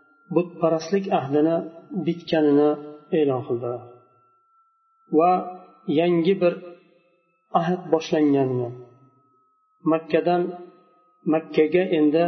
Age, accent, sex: 40-59, Turkish, male